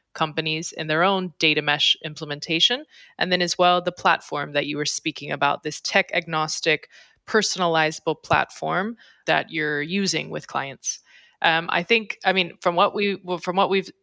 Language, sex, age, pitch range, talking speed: English, female, 20-39, 155-190 Hz, 170 wpm